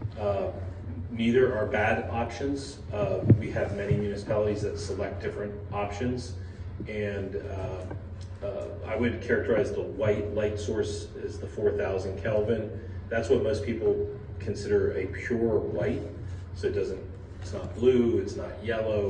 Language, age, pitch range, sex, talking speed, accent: English, 30-49, 95-105 Hz, male, 140 wpm, American